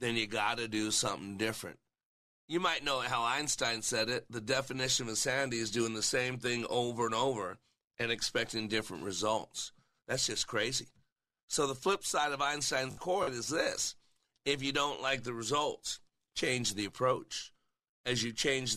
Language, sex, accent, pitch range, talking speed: English, male, American, 115-140 Hz, 175 wpm